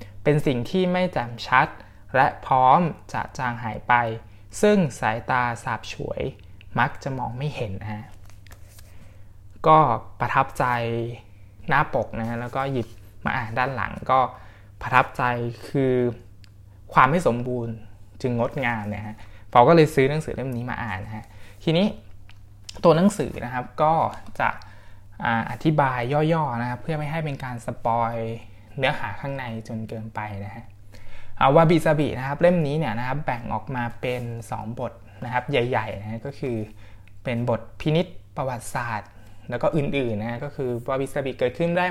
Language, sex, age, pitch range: Thai, male, 20-39, 105-135 Hz